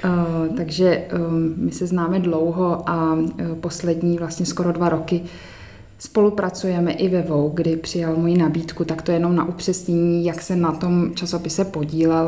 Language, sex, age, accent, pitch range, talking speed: Czech, female, 20-39, native, 155-175 Hz, 160 wpm